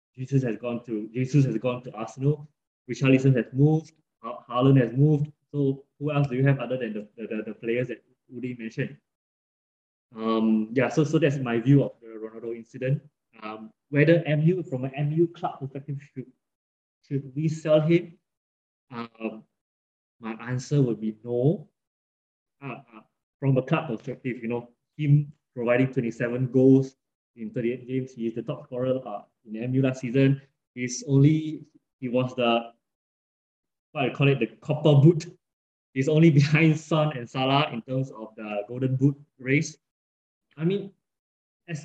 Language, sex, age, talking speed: English, male, 20-39, 165 wpm